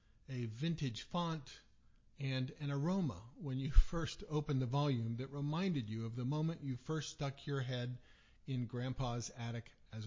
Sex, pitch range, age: male, 115-150 Hz, 50-69